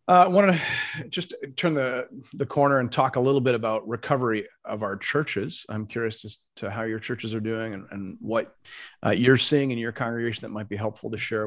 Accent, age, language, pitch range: American, 40-59, English, 105-125 Hz